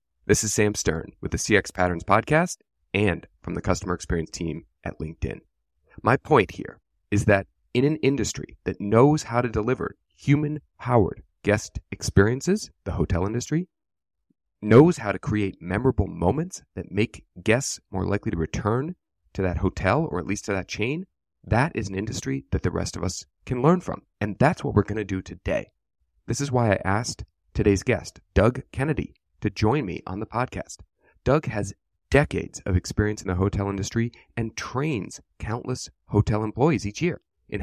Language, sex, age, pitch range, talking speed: English, male, 30-49, 95-125 Hz, 175 wpm